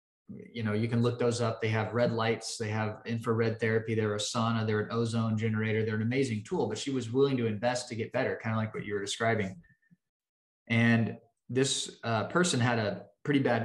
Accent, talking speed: American, 220 wpm